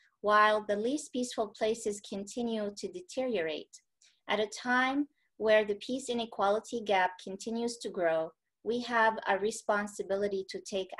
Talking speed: 135 wpm